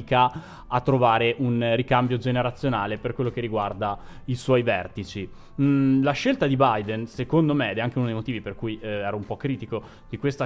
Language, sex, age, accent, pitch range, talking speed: Italian, male, 20-39, native, 110-140 Hz, 195 wpm